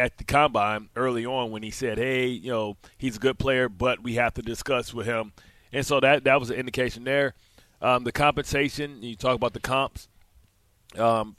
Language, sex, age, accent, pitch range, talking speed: English, male, 30-49, American, 110-130 Hz, 205 wpm